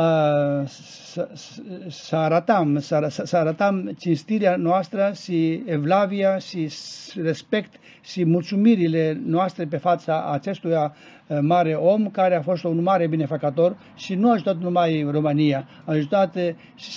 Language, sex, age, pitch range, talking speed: Romanian, male, 60-79, 160-200 Hz, 115 wpm